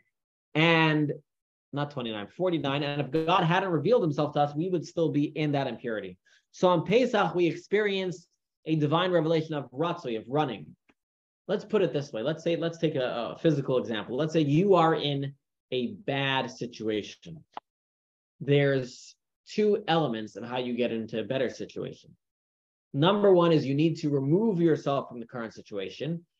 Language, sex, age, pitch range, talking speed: English, male, 20-39, 140-200 Hz, 170 wpm